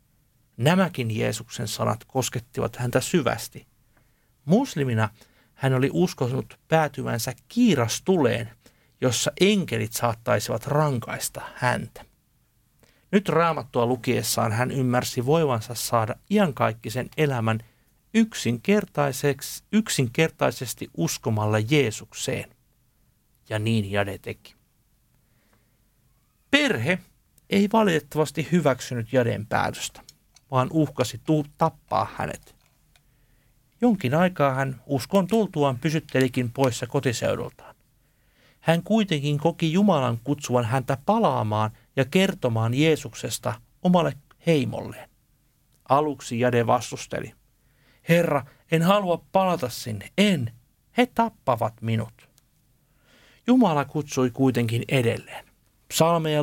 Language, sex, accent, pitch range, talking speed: Finnish, male, native, 120-155 Hz, 85 wpm